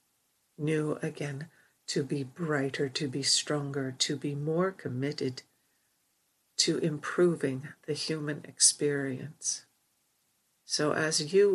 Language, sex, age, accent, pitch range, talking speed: English, female, 50-69, American, 140-165 Hz, 105 wpm